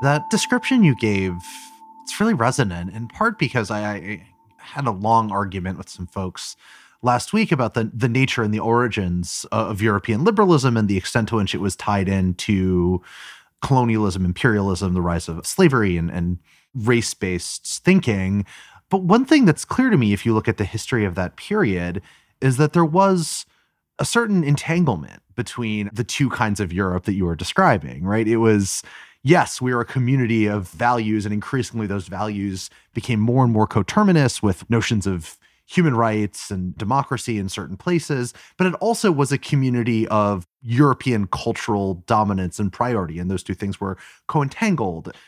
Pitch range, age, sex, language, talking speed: 95-130 Hz, 30-49, male, English, 170 wpm